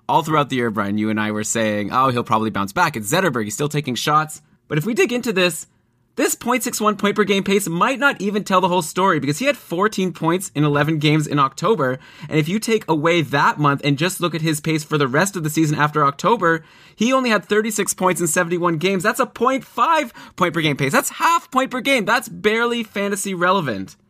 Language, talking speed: English, 235 wpm